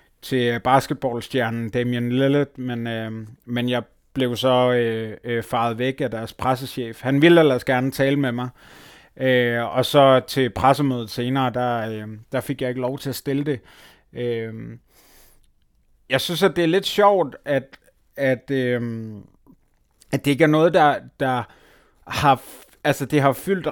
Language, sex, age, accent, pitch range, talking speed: Danish, male, 30-49, native, 120-150 Hz, 165 wpm